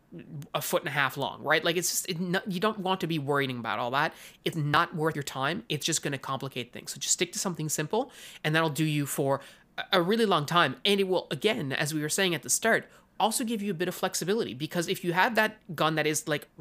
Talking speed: 255 wpm